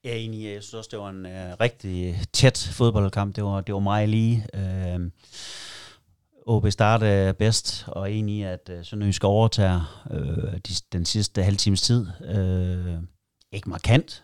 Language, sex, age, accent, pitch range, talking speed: Danish, male, 30-49, native, 90-105 Hz, 165 wpm